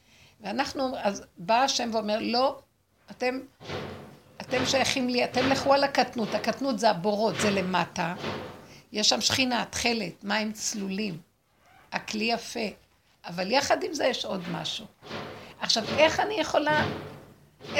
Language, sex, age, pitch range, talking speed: Hebrew, female, 50-69, 215-275 Hz, 130 wpm